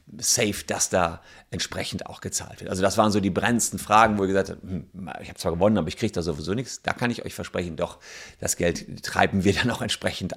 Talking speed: 235 wpm